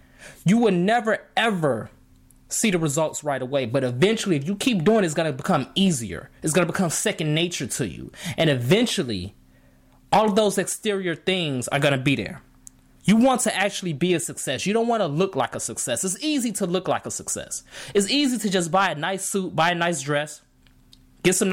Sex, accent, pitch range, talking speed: male, American, 135-195 Hz, 215 wpm